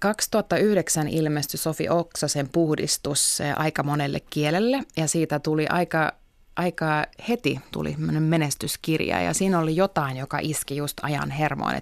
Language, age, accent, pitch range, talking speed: Finnish, 20-39, native, 145-175 Hz, 120 wpm